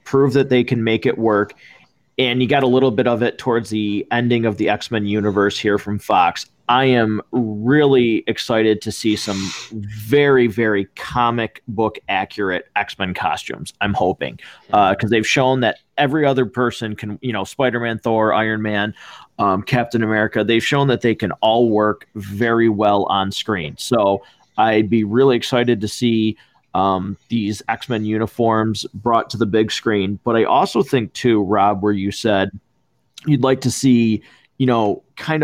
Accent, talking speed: American, 175 wpm